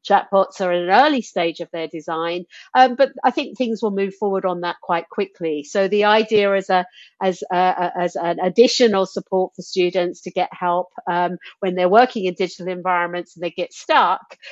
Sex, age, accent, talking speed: female, 50-69, British, 205 wpm